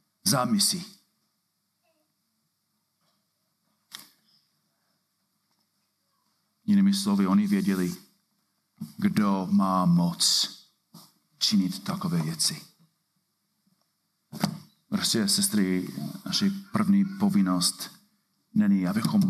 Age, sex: 40-59, male